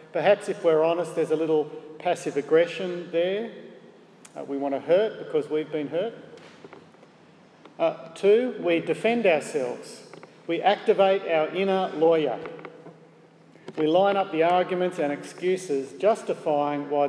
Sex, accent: male, Australian